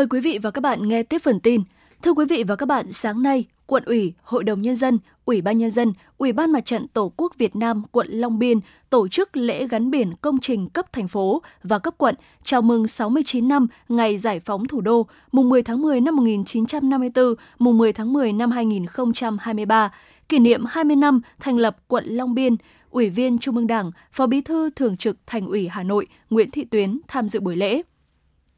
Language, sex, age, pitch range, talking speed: Vietnamese, female, 20-39, 215-265 Hz, 215 wpm